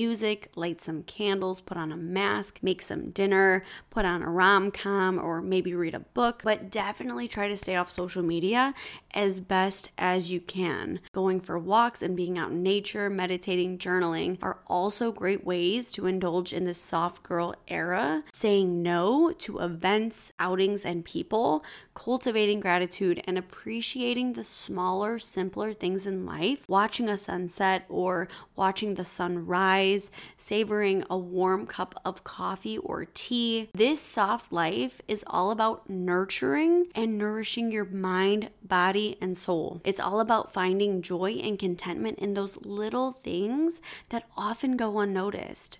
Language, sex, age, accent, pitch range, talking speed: English, female, 20-39, American, 185-220 Hz, 150 wpm